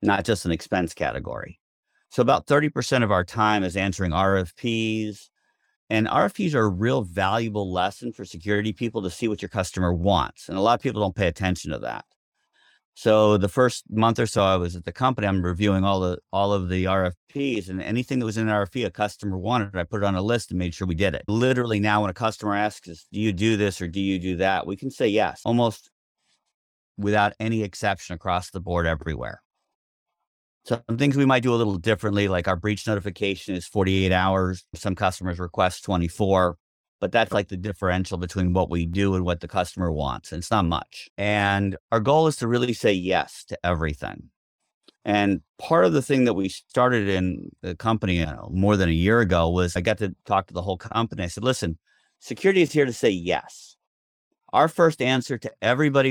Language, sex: English, male